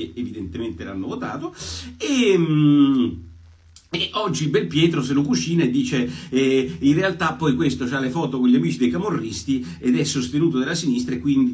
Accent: native